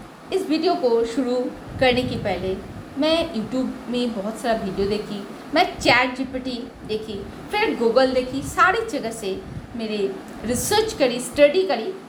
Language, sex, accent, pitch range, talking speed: Hindi, female, native, 230-315 Hz, 145 wpm